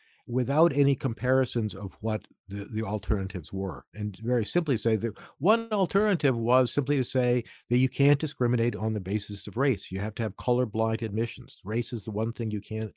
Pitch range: 105-130 Hz